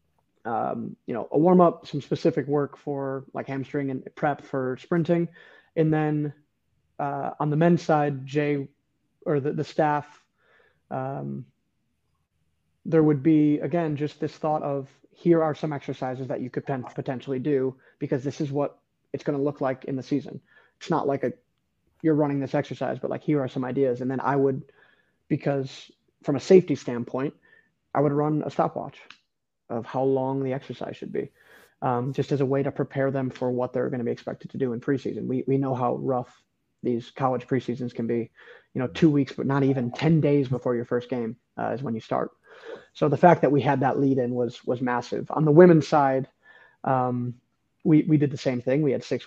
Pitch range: 130-150 Hz